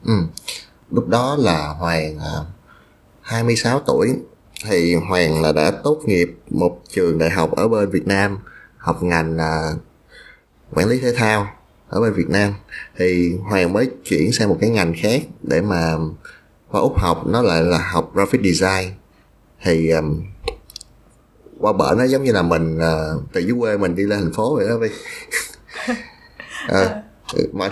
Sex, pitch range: male, 80-105 Hz